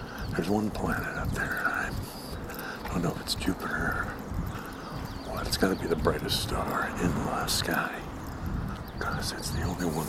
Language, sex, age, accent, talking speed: English, male, 60-79, American, 175 wpm